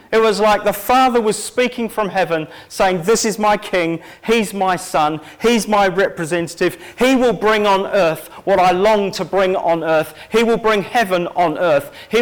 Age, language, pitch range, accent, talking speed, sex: 40-59, English, 165-210 Hz, British, 190 wpm, male